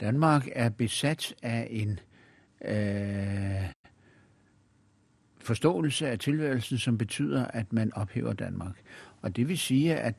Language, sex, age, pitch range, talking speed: Danish, male, 60-79, 110-140 Hz, 110 wpm